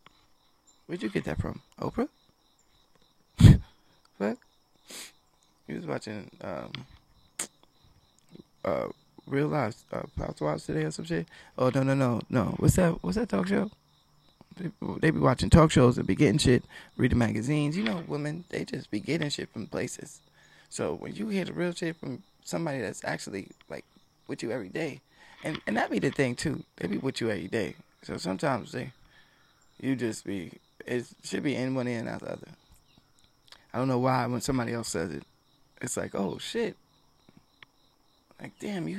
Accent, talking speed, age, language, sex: American, 175 wpm, 20-39, English, male